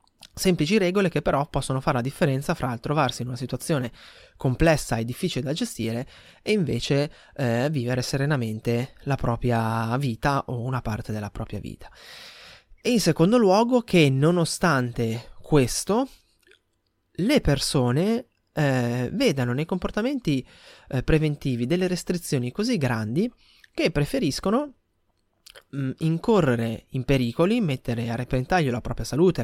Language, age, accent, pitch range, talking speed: Italian, 20-39, native, 120-170 Hz, 125 wpm